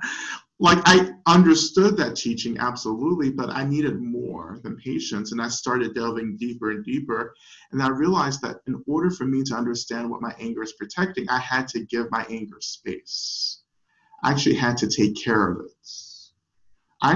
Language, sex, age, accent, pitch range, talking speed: English, male, 40-59, American, 115-150 Hz, 175 wpm